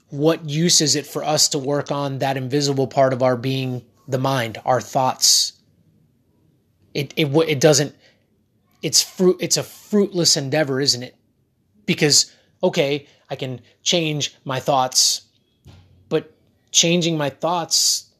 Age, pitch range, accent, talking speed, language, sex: 20-39, 130-160 Hz, American, 140 wpm, English, male